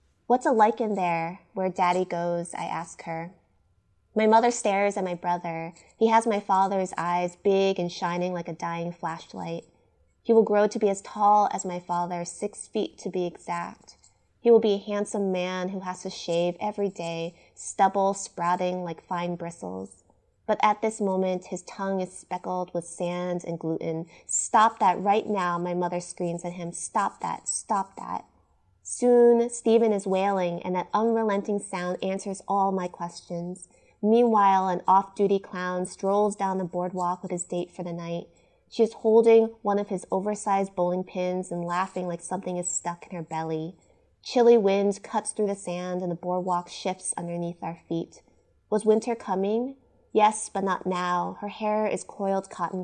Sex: female